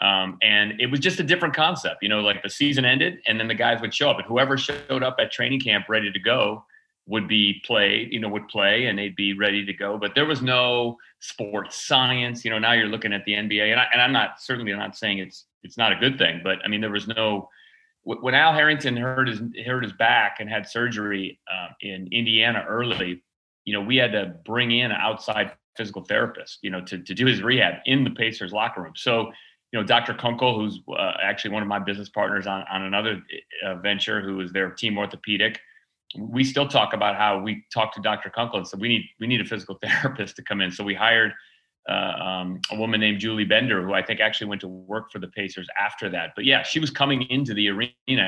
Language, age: English, 30-49